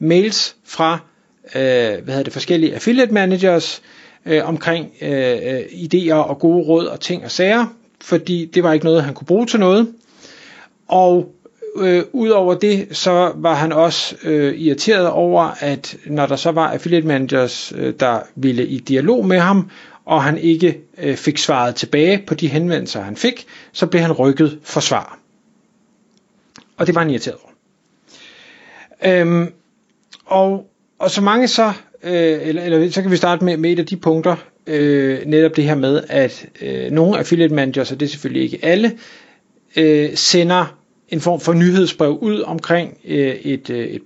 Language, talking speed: Danish, 170 wpm